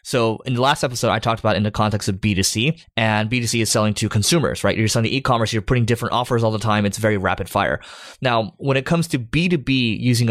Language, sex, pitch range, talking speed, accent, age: English, male, 105-125 Hz, 245 wpm, American, 20-39